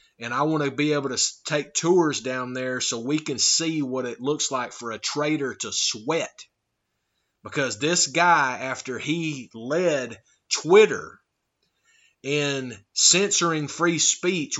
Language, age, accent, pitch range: English, 30-49, American, 135-180 Hz